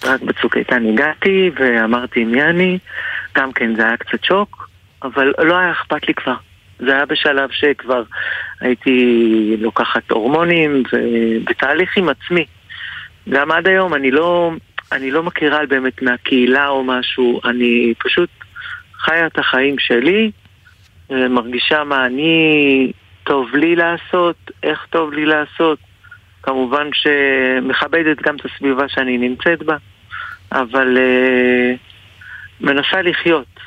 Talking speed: 120 wpm